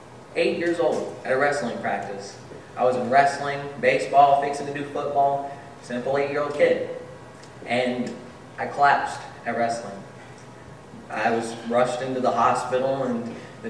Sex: male